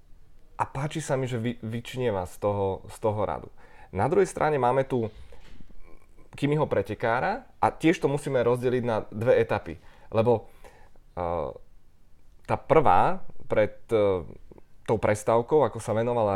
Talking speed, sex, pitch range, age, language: 135 wpm, male, 110-135 Hz, 20-39, Czech